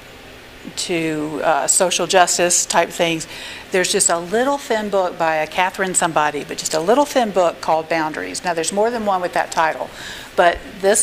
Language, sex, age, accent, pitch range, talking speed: English, female, 50-69, American, 170-205 Hz, 185 wpm